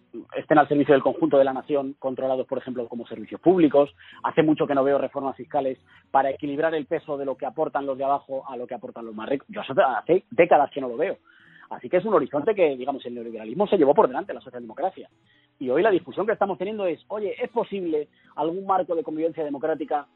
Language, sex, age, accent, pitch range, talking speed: Spanish, male, 30-49, Spanish, 135-175 Hz, 230 wpm